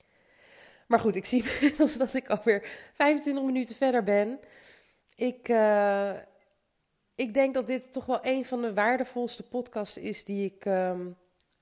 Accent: Dutch